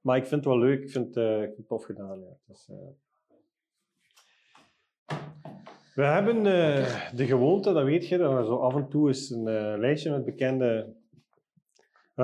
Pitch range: 120-140 Hz